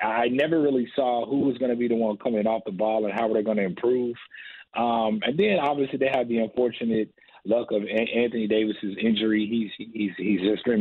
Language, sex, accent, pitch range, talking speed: English, male, American, 110-125 Hz, 230 wpm